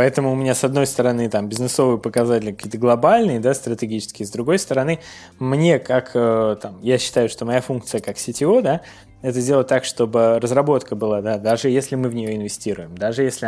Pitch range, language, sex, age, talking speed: 110-135 Hz, Russian, male, 20-39, 185 wpm